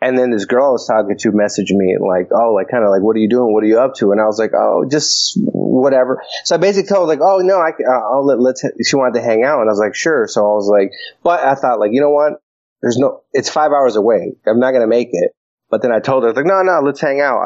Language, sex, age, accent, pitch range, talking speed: English, male, 30-49, American, 110-140 Hz, 315 wpm